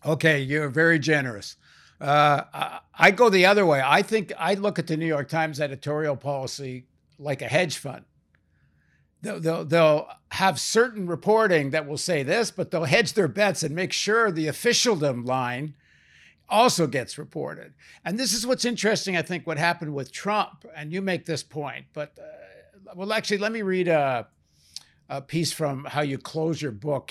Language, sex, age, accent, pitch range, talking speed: English, male, 60-79, American, 140-190 Hz, 175 wpm